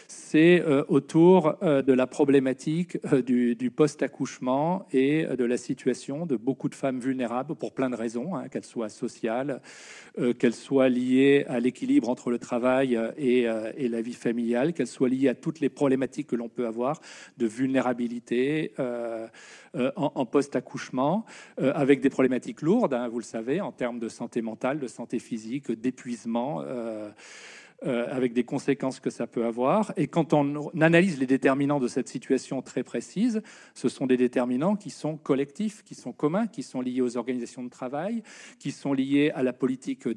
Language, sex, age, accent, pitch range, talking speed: French, male, 40-59, French, 125-150 Hz, 170 wpm